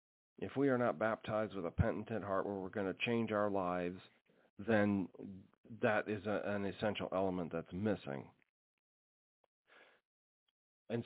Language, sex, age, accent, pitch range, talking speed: English, male, 40-59, American, 95-120 Hz, 135 wpm